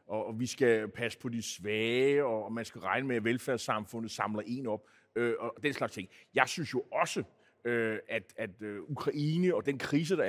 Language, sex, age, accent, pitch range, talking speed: Danish, male, 30-49, native, 120-175 Hz, 205 wpm